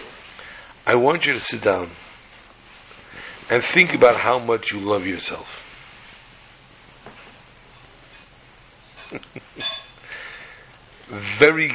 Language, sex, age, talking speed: English, male, 60-79, 75 wpm